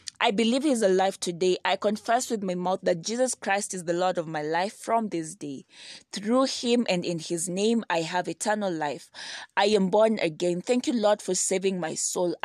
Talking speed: 205 wpm